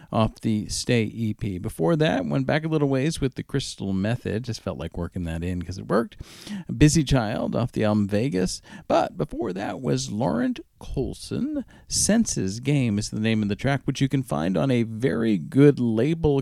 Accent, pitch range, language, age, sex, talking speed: American, 100-150 Hz, English, 50-69, male, 195 wpm